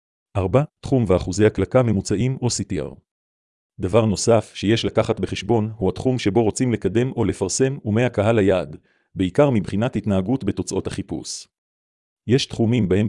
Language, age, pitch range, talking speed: Hebrew, 40-59, 95-115 Hz, 135 wpm